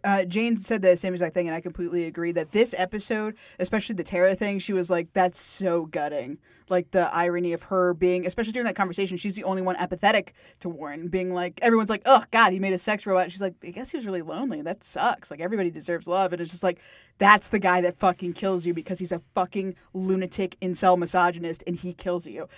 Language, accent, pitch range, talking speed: English, American, 180-220 Hz, 235 wpm